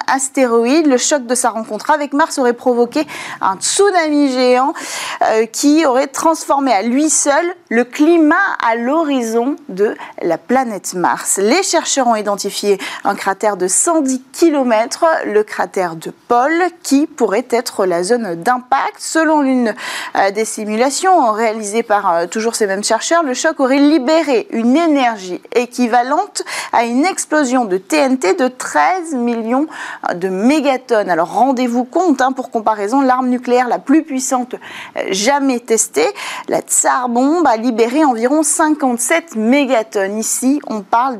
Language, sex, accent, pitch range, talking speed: French, female, French, 230-310 Hz, 145 wpm